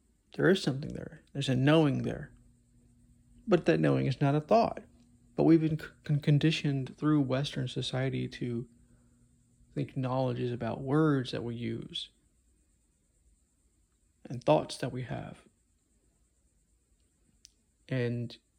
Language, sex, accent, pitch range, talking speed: English, male, American, 90-145 Hz, 125 wpm